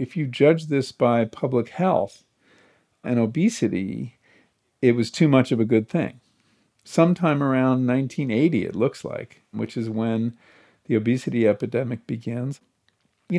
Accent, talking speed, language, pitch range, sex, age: American, 140 wpm, English, 115-140 Hz, male, 50-69